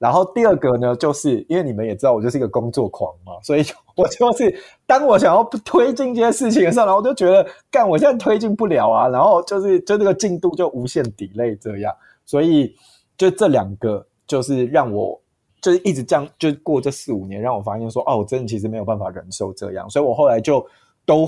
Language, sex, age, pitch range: Chinese, male, 20-39, 110-170 Hz